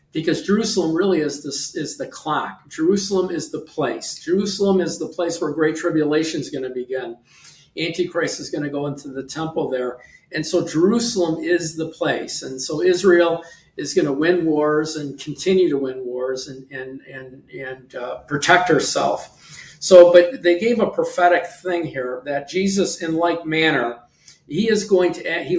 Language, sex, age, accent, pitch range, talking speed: English, male, 50-69, American, 145-175 Hz, 170 wpm